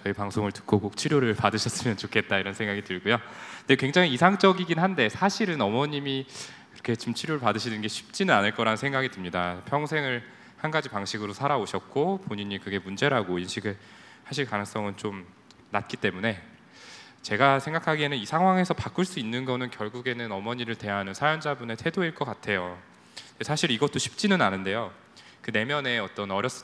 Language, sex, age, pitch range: Korean, male, 20-39, 105-145 Hz